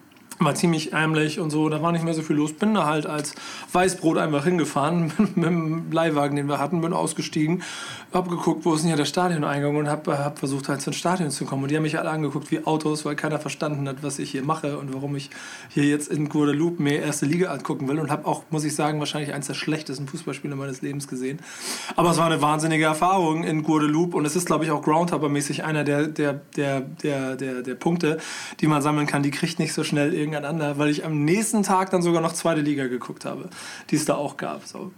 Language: German